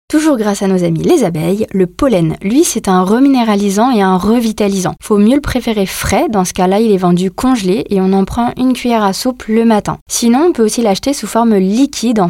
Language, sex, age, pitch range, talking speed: French, female, 20-39, 195-255 Hz, 230 wpm